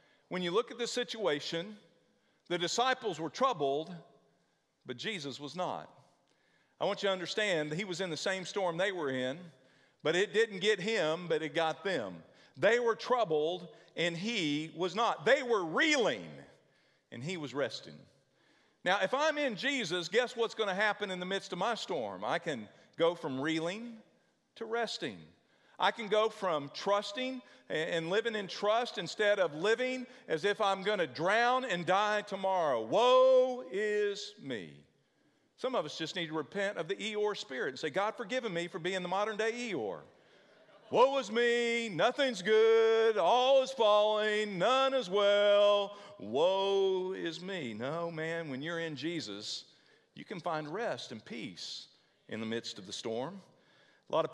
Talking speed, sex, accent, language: 170 wpm, male, American, English